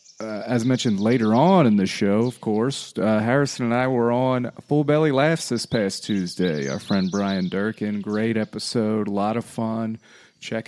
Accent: American